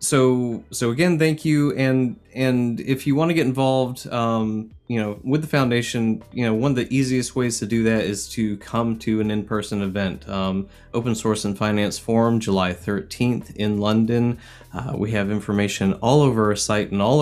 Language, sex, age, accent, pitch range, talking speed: English, male, 20-39, American, 100-120 Hz, 190 wpm